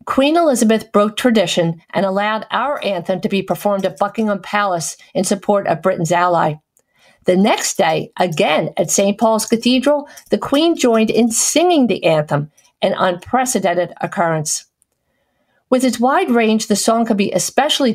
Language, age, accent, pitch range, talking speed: English, 50-69, American, 185-235 Hz, 155 wpm